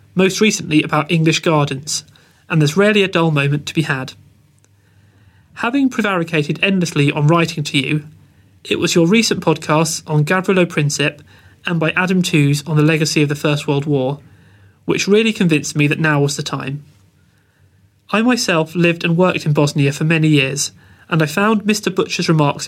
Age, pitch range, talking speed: 30-49, 145-175 Hz, 175 wpm